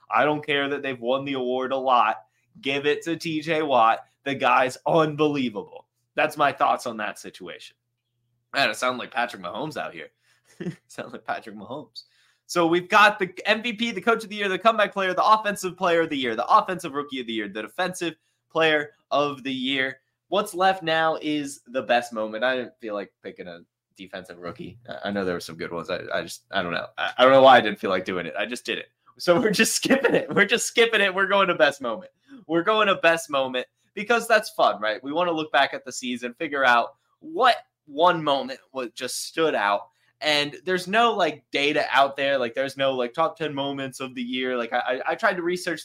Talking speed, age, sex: 230 wpm, 20-39, male